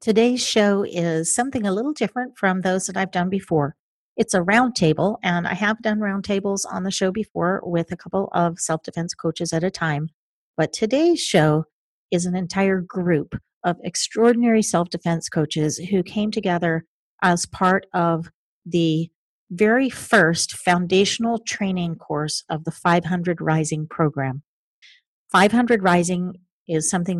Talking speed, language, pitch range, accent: 145 wpm, English, 165-200 Hz, American